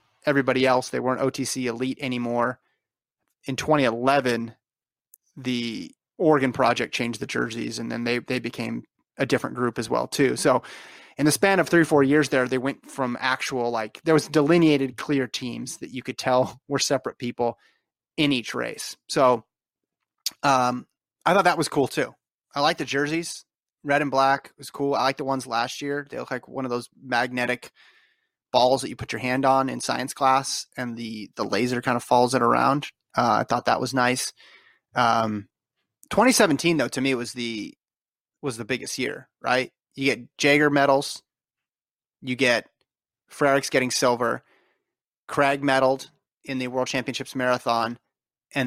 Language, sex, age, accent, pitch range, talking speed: English, male, 30-49, American, 120-140 Hz, 175 wpm